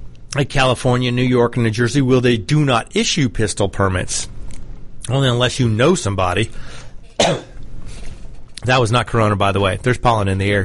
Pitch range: 120-155 Hz